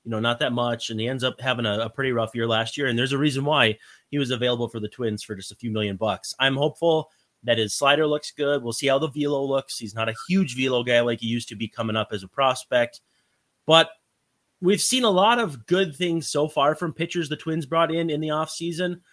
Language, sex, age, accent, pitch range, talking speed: English, male, 30-49, American, 115-160 Hz, 255 wpm